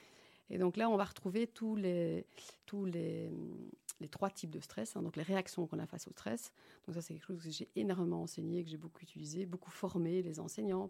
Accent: French